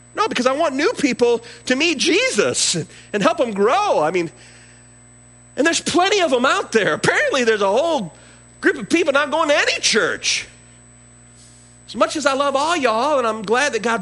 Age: 50-69